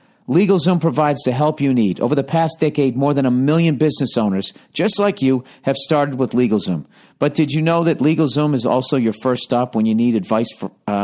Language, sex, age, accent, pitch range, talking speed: English, male, 50-69, American, 110-145 Hz, 210 wpm